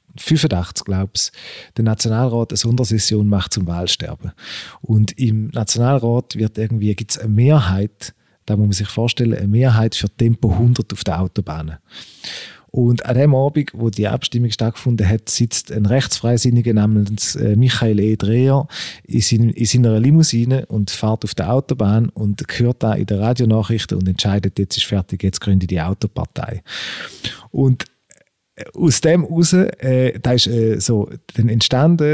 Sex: male